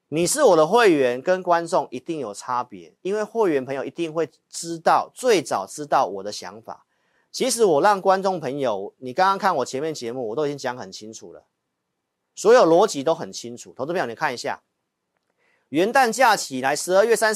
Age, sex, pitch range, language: 40-59, male, 130-190 Hz, Chinese